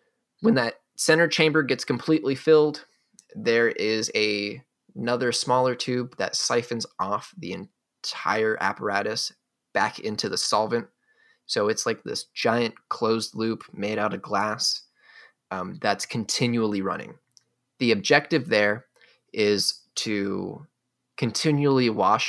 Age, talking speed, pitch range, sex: 20-39, 120 wpm, 105-125 Hz, male